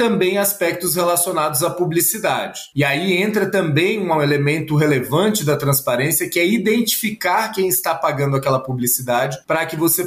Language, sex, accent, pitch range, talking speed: Portuguese, male, Brazilian, 150-190 Hz, 150 wpm